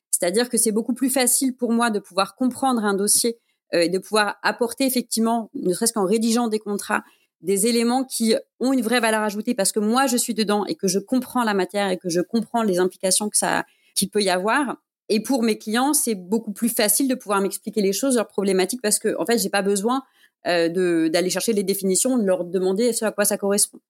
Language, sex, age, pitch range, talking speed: French, female, 30-49, 195-240 Hz, 235 wpm